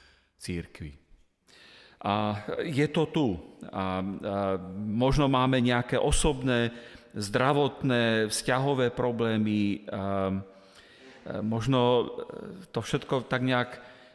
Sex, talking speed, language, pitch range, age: male, 70 wpm, Slovak, 100-130 Hz, 40-59